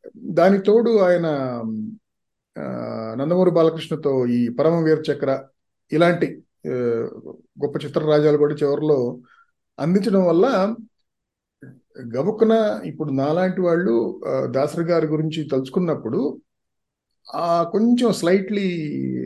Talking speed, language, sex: 80 wpm, Telugu, male